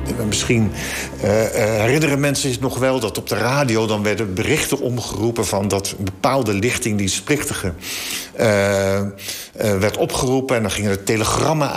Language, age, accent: Dutch, 50-69, Dutch